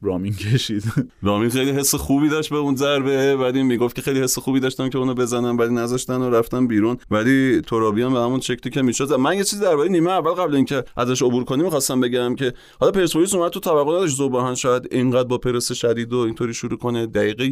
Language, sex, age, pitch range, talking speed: Persian, male, 30-49, 115-140 Hz, 215 wpm